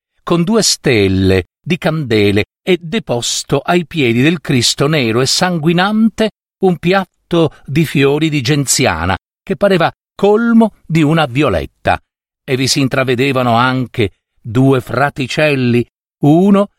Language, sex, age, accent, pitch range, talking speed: Italian, male, 50-69, native, 115-165 Hz, 120 wpm